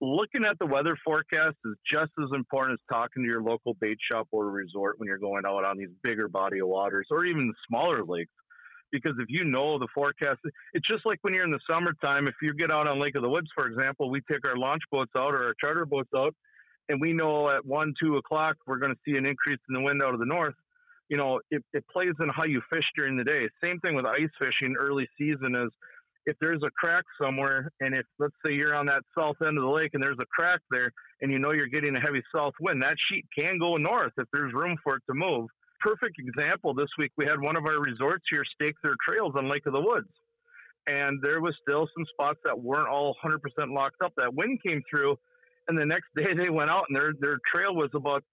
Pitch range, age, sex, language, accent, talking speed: 135-160 Hz, 40-59, male, English, American, 245 wpm